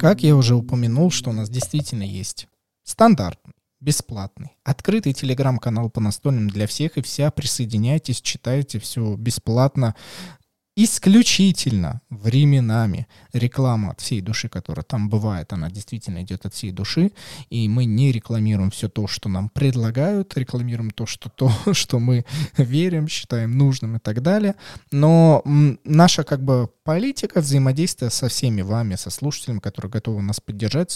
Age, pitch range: 20-39, 105-145 Hz